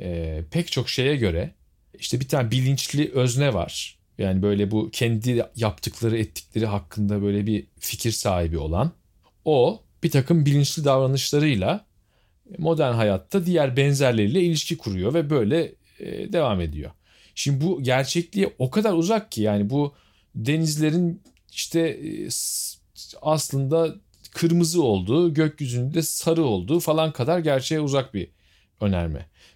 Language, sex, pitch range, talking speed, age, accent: Turkish, male, 105-155 Hz, 130 wpm, 40-59, native